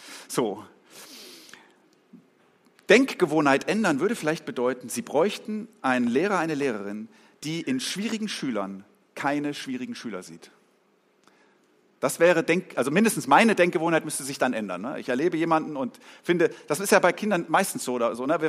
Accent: German